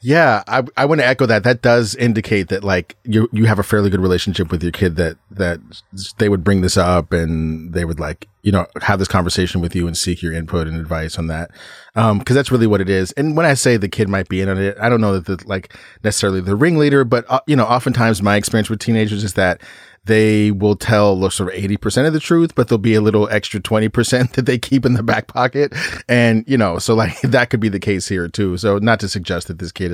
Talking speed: 255 wpm